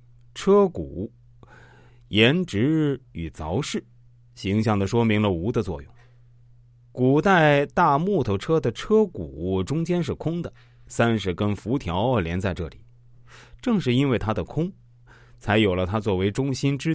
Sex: male